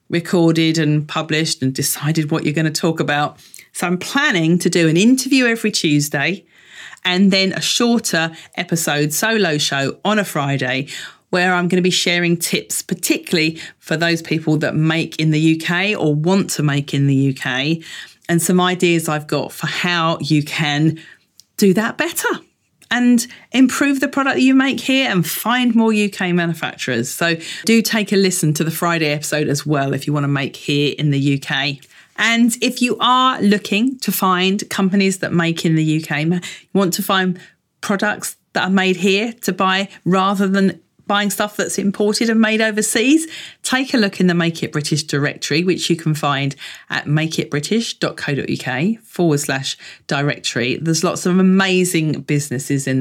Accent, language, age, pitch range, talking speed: British, English, 40-59, 150-200 Hz, 175 wpm